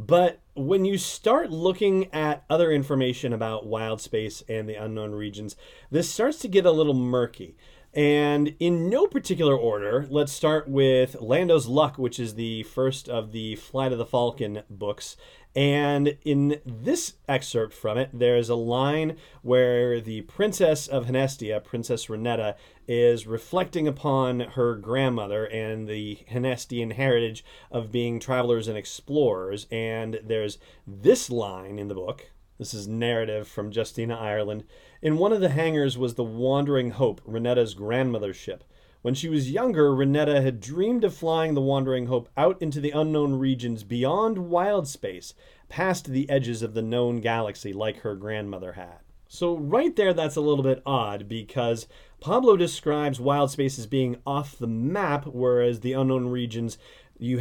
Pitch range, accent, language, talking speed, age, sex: 115-145 Hz, American, English, 160 wpm, 40-59, male